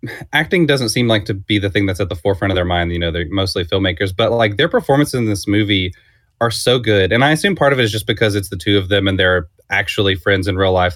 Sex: male